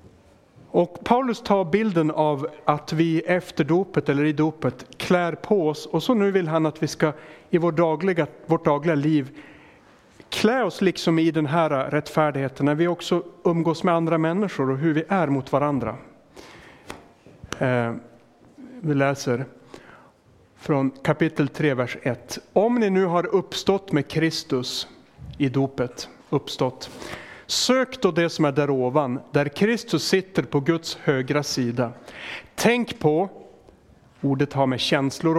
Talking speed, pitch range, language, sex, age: 150 wpm, 135-175 Hz, Swedish, male, 30-49